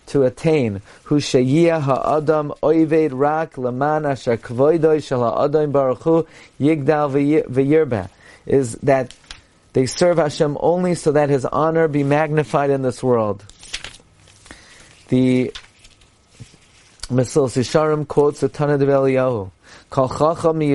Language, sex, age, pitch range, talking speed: English, male, 30-49, 130-160 Hz, 105 wpm